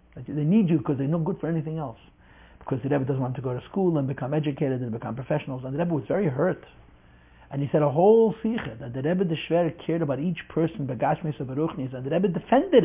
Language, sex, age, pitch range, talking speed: English, male, 60-79, 130-180 Hz, 235 wpm